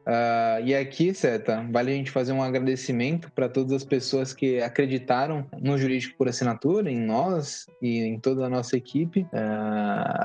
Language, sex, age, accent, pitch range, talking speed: Portuguese, male, 20-39, Brazilian, 125-150 Hz, 170 wpm